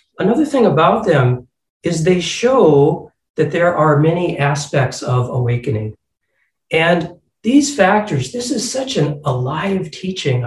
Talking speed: 130 wpm